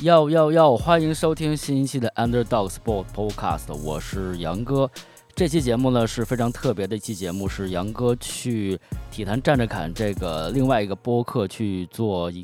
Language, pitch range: Chinese, 95-125 Hz